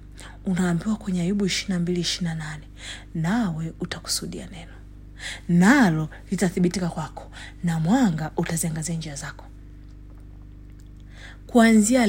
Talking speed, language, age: 95 wpm, English, 40-59